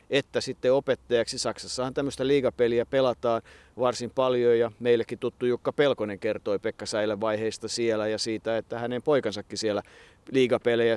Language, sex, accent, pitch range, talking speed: Finnish, male, native, 110-125 Hz, 140 wpm